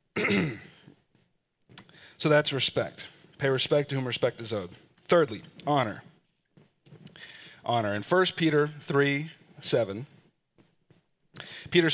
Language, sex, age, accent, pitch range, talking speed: English, male, 40-59, American, 130-165 Hz, 95 wpm